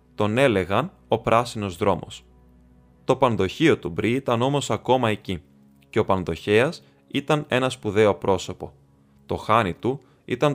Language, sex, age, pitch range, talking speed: Greek, male, 20-39, 95-125 Hz, 135 wpm